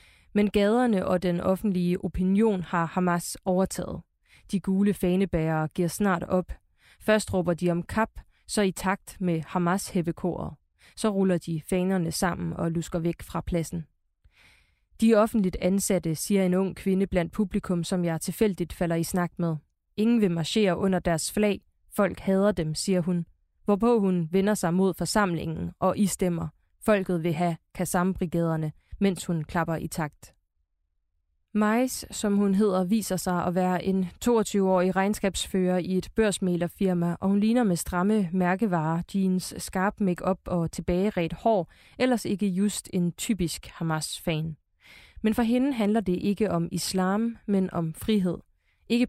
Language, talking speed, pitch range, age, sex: Danish, 155 wpm, 170-205 Hz, 20-39, female